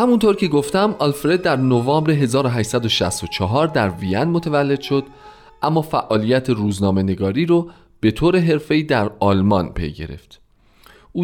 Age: 30-49